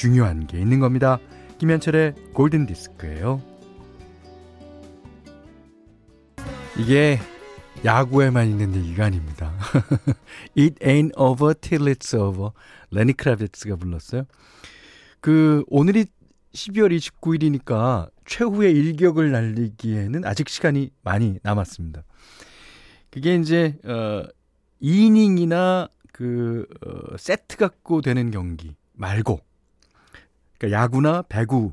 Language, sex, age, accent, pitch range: Korean, male, 40-59, native, 100-165 Hz